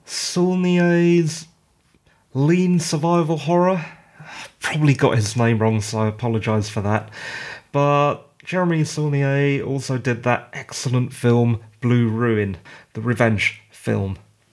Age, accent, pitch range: 30-49, British, 120-165 Hz